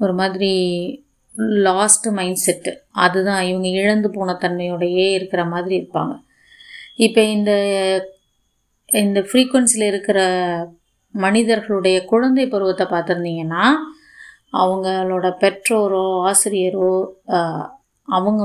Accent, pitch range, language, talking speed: native, 180-215 Hz, Tamil, 85 wpm